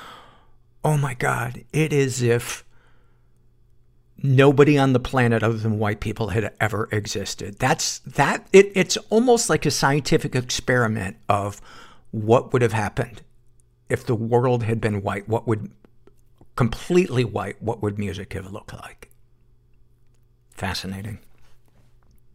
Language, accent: English, American